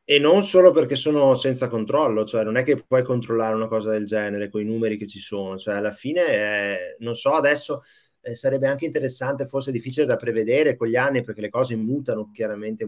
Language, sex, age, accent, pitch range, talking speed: Italian, male, 30-49, native, 110-135 Hz, 210 wpm